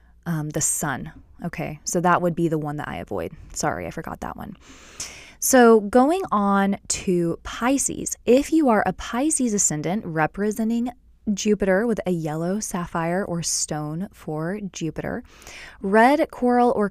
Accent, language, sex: American, English, female